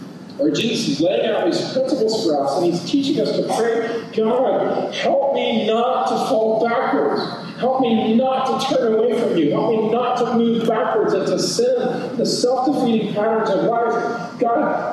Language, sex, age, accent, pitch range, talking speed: English, male, 40-59, American, 190-260 Hz, 175 wpm